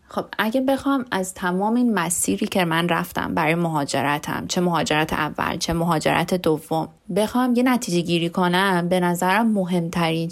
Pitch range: 170-210 Hz